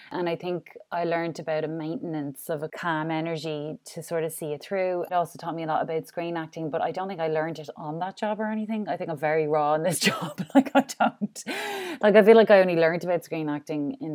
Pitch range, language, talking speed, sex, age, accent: 160-190 Hz, English, 260 wpm, female, 30-49, Irish